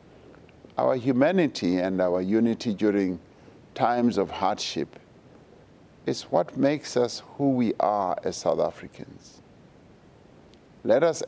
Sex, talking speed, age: male, 110 wpm, 50-69